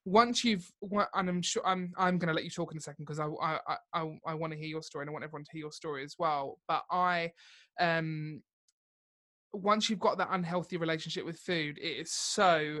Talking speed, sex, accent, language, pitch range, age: 230 wpm, male, British, English, 160-190 Hz, 20-39